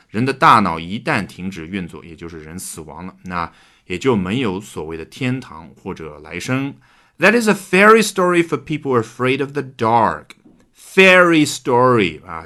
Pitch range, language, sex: 95-150 Hz, Chinese, male